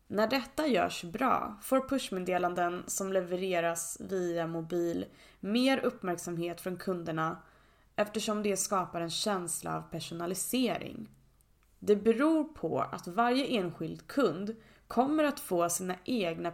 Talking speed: 120 wpm